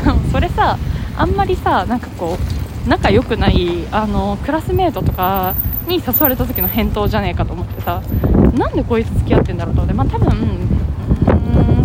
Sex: female